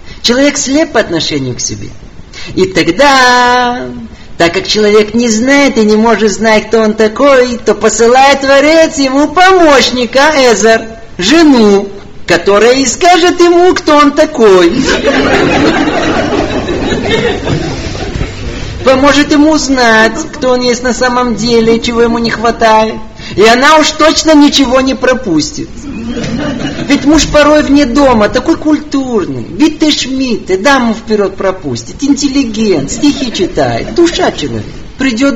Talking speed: 125 wpm